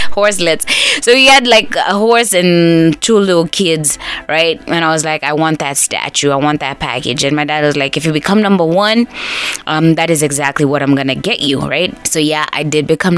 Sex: female